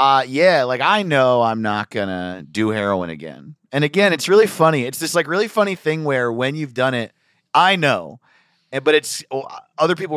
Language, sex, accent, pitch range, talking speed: English, male, American, 105-150 Hz, 200 wpm